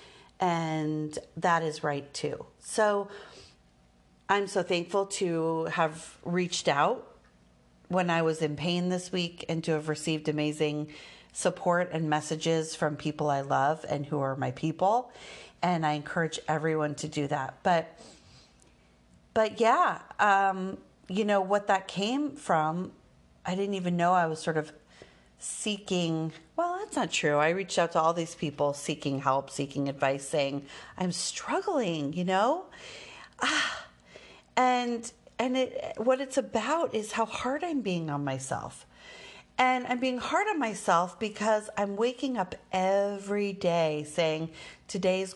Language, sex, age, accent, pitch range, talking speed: English, female, 40-59, American, 150-195 Hz, 145 wpm